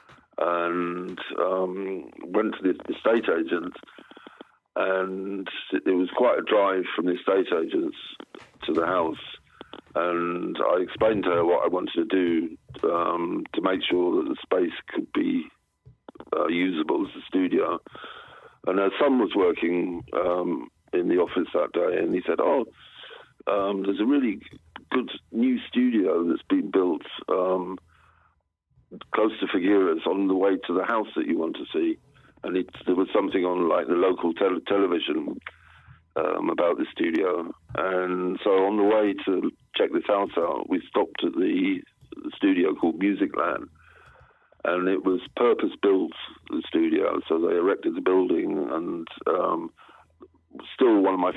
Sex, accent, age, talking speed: male, British, 50-69, 155 wpm